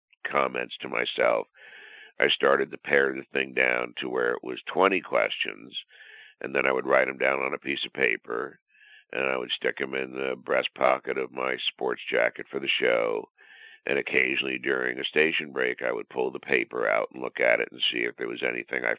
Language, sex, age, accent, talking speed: English, male, 60-79, American, 210 wpm